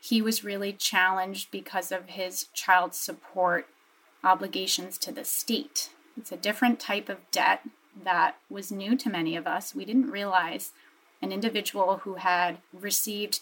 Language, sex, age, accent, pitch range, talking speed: English, female, 30-49, American, 185-230 Hz, 150 wpm